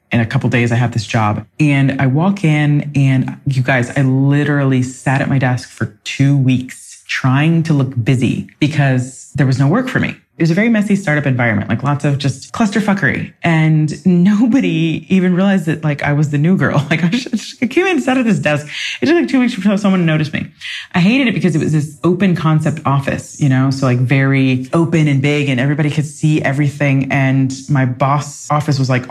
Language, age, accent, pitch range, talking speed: English, 20-39, American, 135-180 Hz, 220 wpm